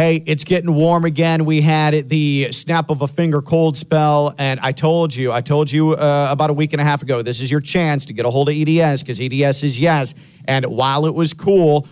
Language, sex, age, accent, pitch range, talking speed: English, male, 40-59, American, 140-165 Hz, 240 wpm